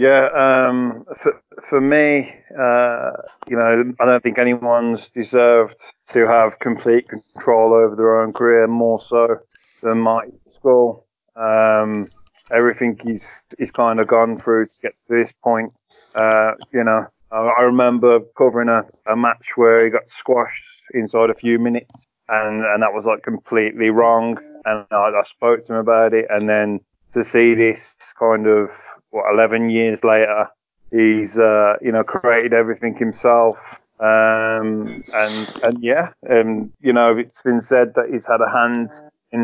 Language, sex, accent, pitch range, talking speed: English, male, British, 110-120 Hz, 160 wpm